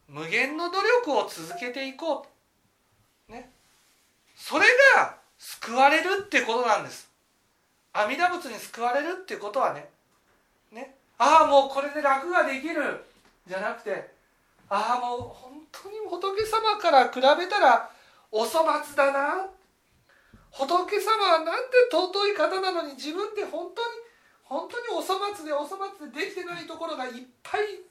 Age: 40-59